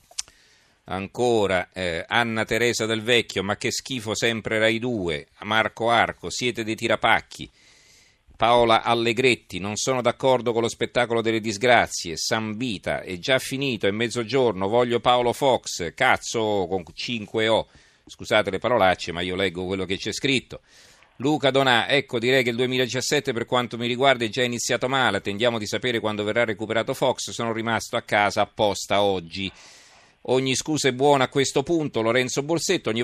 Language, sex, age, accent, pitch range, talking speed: Italian, male, 40-59, native, 100-125 Hz, 160 wpm